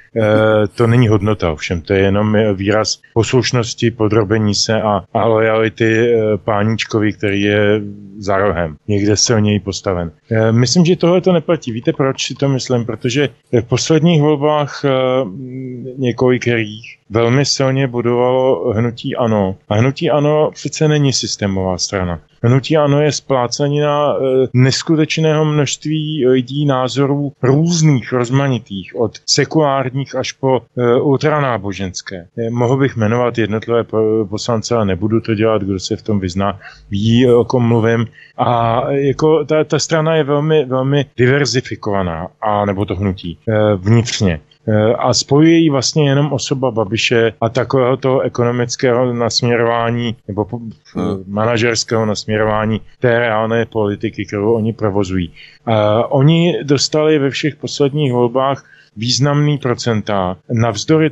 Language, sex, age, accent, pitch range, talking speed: Czech, male, 20-39, native, 110-135 Hz, 125 wpm